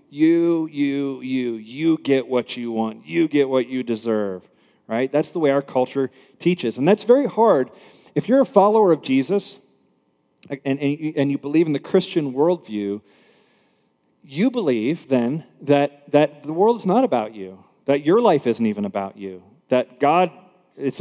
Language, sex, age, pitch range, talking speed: English, male, 40-59, 120-145 Hz, 170 wpm